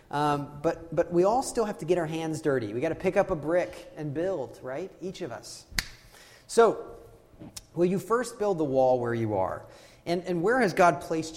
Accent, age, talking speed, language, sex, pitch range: American, 30-49, 215 wpm, English, male, 125-170 Hz